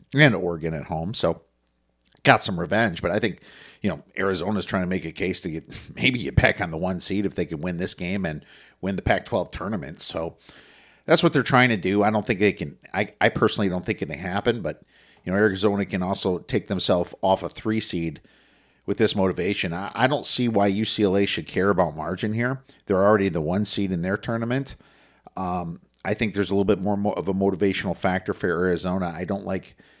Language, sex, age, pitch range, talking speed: English, male, 50-69, 90-110 Hz, 220 wpm